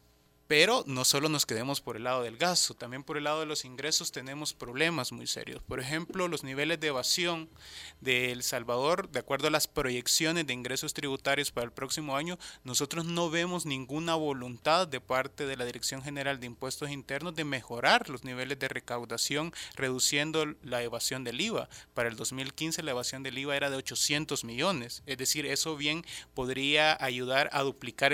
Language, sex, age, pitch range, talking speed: Spanish, male, 30-49, 125-155 Hz, 185 wpm